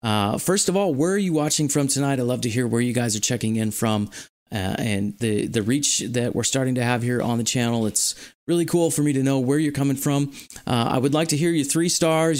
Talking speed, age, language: 265 wpm, 30-49, English